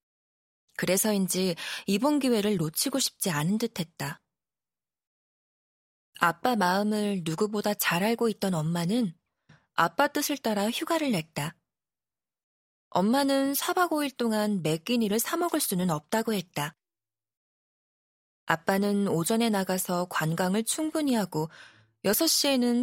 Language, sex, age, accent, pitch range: Korean, female, 20-39, native, 165-245 Hz